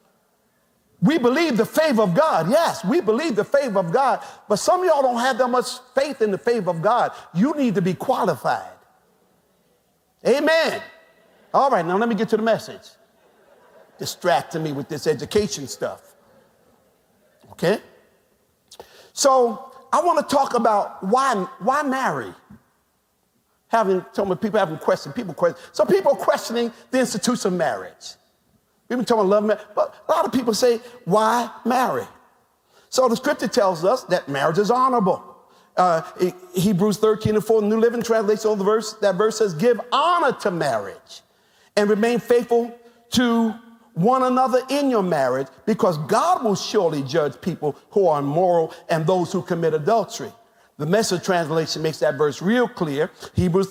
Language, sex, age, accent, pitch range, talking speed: English, male, 50-69, American, 185-245 Hz, 170 wpm